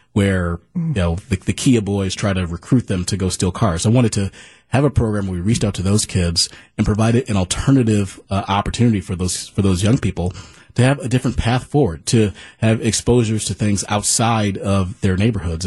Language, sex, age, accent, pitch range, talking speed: English, male, 30-49, American, 95-115 Hz, 215 wpm